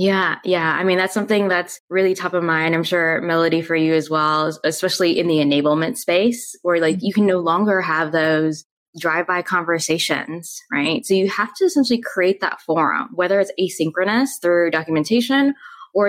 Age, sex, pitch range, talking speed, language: 10-29, female, 165-205 Hz, 180 wpm, English